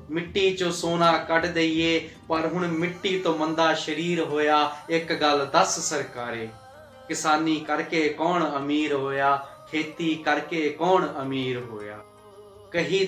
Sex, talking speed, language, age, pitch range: male, 125 wpm, Punjabi, 20-39, 145-165 Hz